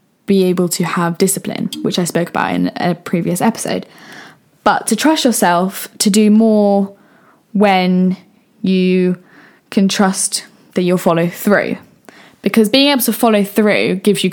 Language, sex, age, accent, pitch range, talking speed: English, female, 10-29, British, 185-220 Hz, 150 wpm